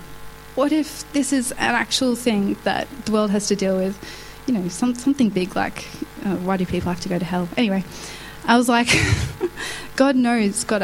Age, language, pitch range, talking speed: 10-29, English, 185-235 Hz, 195 wpm